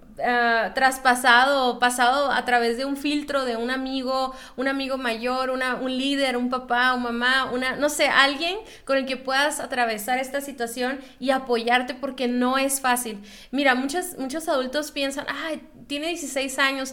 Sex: female